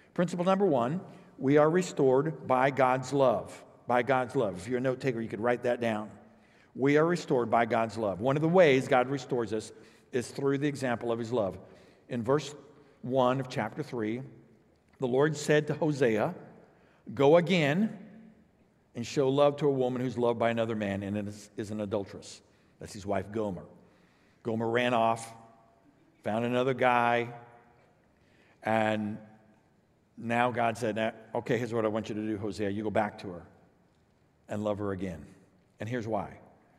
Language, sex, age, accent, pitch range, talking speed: English, male, 60-79, American, 110-165 Hz, 175 wpm